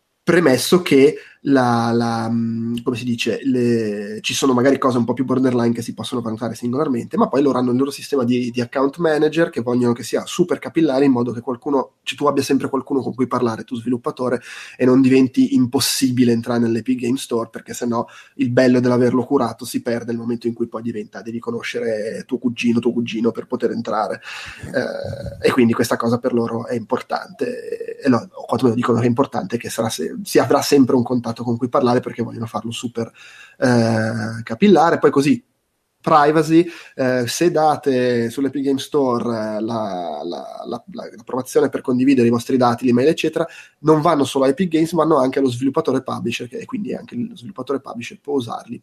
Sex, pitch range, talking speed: male, 120-140 Hz, 195 wpm